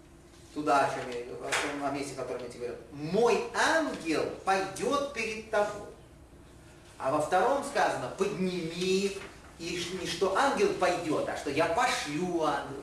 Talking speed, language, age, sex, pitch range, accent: 125 wpm, Russian, 30-49, male, 130-215 Hz, native